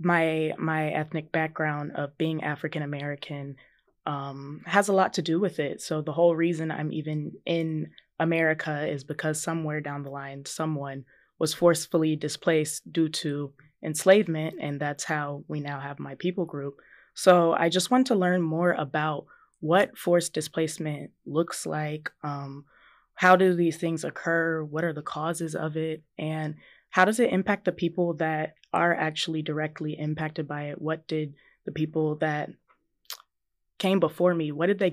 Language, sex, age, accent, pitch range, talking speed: English, female, 20-39, American, 150-170 Hz, 165 wpm